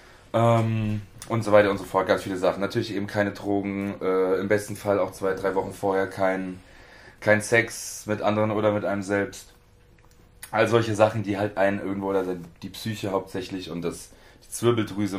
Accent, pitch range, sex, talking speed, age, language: German, 95-120 Hz, male, 180 wpm, 30-49, German